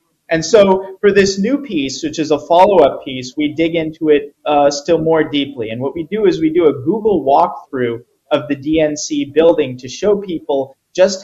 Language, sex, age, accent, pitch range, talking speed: English, male, 30-49, American, 150-195 Hz, 200 wpm